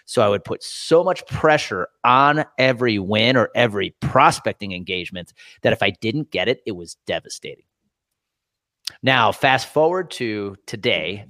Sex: male